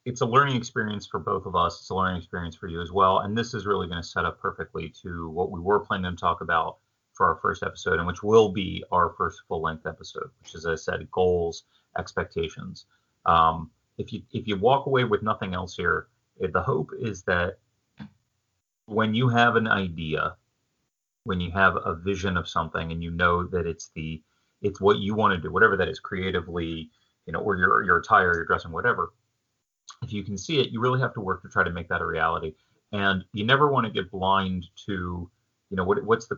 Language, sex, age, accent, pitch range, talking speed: English, male, 30-49, American, 90-115 Hz, 220 wpm